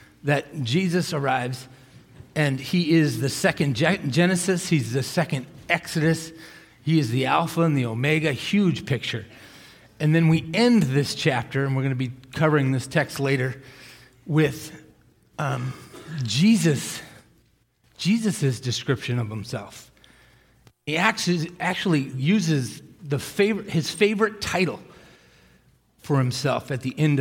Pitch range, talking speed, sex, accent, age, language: 130-165 Hz, 130 wpm, male, American, 40-59, English